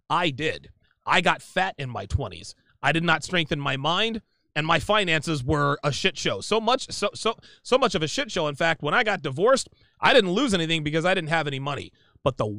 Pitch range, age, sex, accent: 145-205 Hz, 30-49, male, American